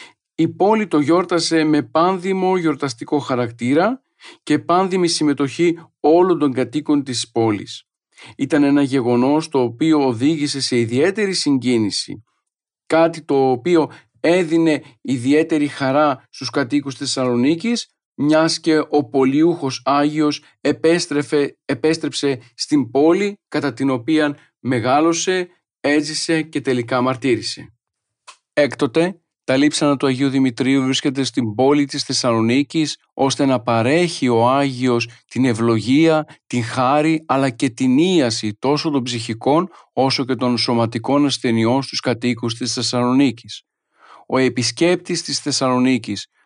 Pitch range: 125-160 Hz